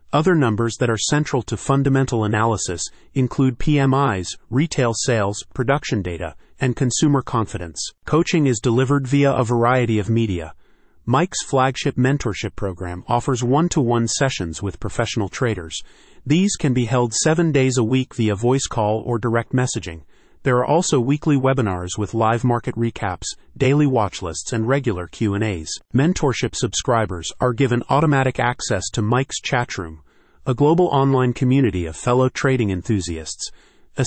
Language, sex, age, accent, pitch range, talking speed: English, male, 30-49, American, 105-135 Hz, 145 wpm